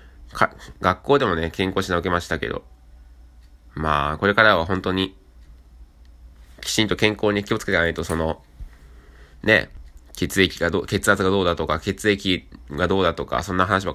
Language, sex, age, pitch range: Japanese, male, 20-39, 70-95 Hz